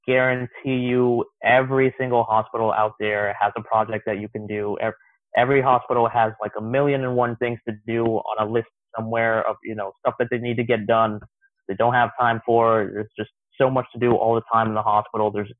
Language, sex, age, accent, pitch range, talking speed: English, male, 20-39, American, 105-125 Hz, 225 wpm